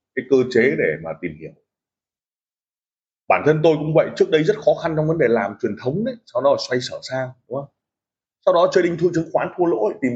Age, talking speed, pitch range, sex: 20-39, 240 wpm, 140-170 Hz, male